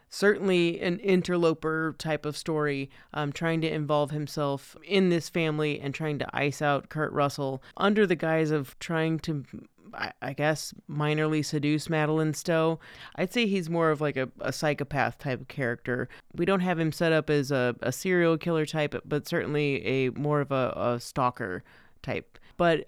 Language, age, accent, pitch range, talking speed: English, 30-49, American, 135-160 Hz, 175 wpm